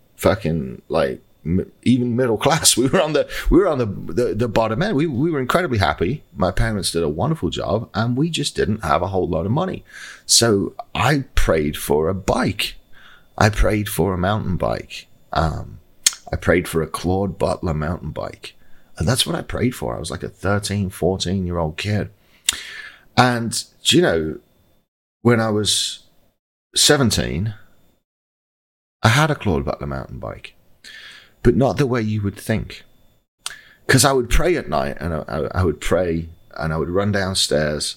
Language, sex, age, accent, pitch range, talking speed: English, male, 40-59, British, 80-110 Hz, 175 wpm